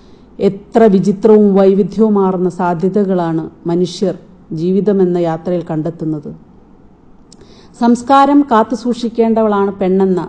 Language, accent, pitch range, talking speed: Malayalam, native, 170-205 Hz, 65 wpm